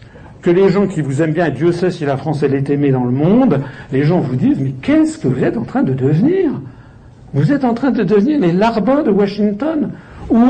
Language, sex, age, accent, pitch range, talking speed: French, male, 70-89, French, 140-215 Hz, 240 wpm